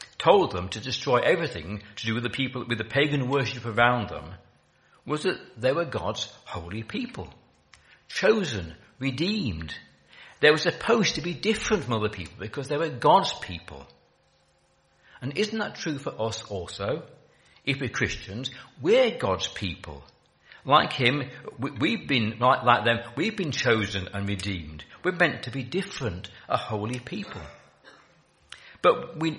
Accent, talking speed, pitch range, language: British, 150 wpm, 105-140 Hz, English